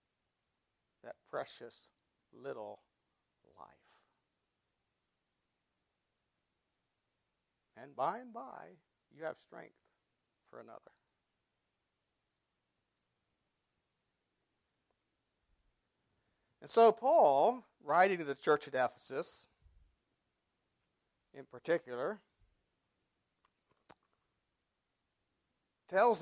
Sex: male